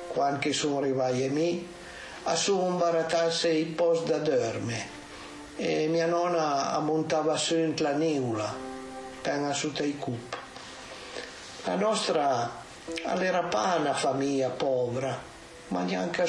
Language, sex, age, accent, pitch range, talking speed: Italian, male, 50-69, native, 135-165 Hz, 120 wpm